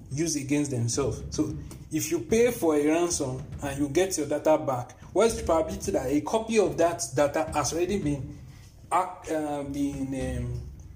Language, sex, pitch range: English, male, 120-165 Hz